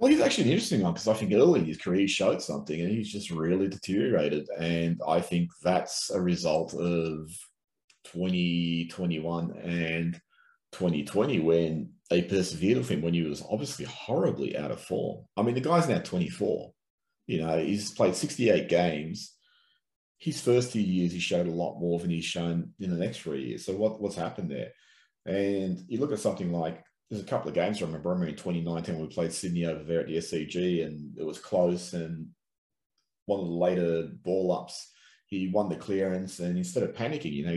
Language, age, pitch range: English, 30-49, 85-100 Hz